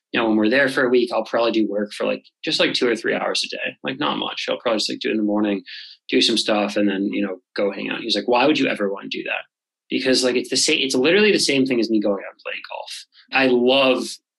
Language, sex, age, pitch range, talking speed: English, male, 20-39, 105-120 Hz, 310 wpm